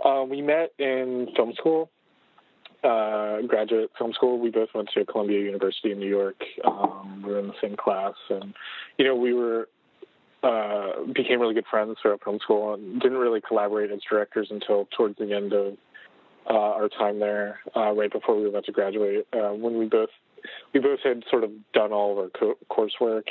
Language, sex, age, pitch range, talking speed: English, male, 20-39, 105-130 Hz, 200 wpm